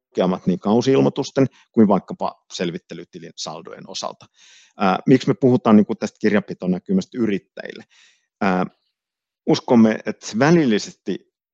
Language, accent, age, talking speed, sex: Finnish, native, 50-69, 95 wpm, male